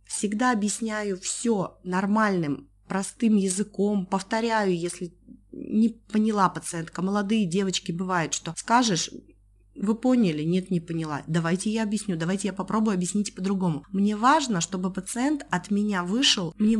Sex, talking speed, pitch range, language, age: female, 130 wpm, 180-225 Hz, Russian, 20-39